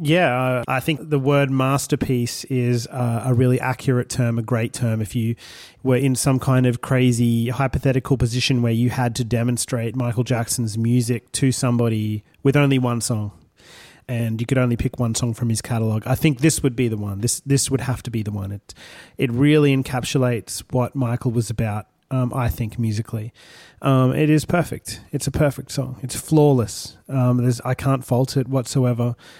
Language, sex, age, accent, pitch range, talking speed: English, male, 30-49, Australian, 120-135 Hz, 190 wpm